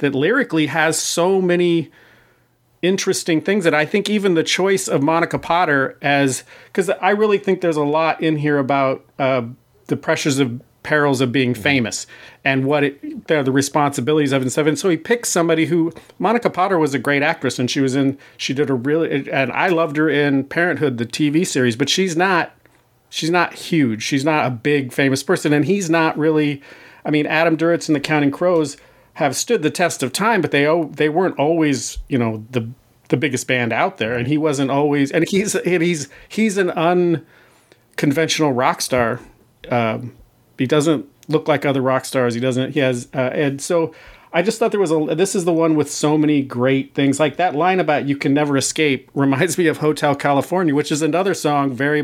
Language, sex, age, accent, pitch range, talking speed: English, male, 40-59, American, 135-165 Hz, 200 wpm